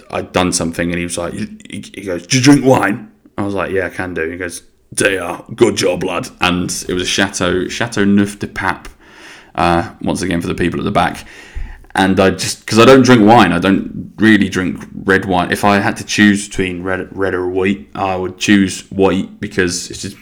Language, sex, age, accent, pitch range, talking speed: English, male, 20-39, British, 90-110 Hz, 225 wpm